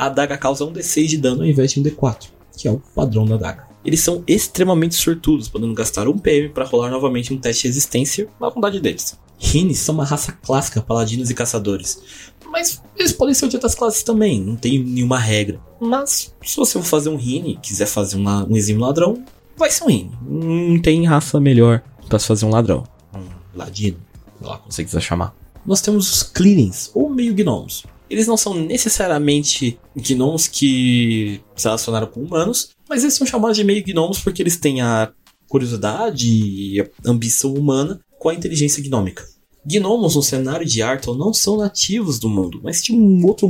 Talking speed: 200 wpm